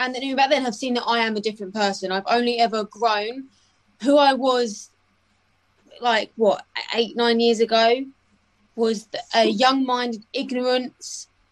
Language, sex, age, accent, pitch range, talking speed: English, female, 20-39, British, 200-240 Hz, 150 wpm